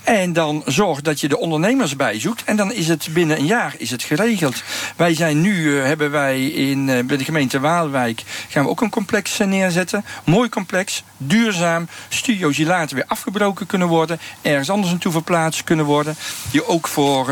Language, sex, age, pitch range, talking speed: Dutch, male, 50-69, 130-170 Hz, 185 wpm